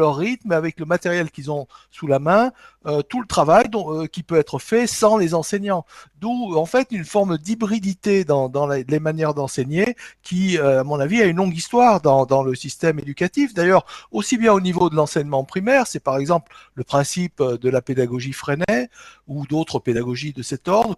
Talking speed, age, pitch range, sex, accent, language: 205 wpm, 60-79, 150-215 Hz, male, French, French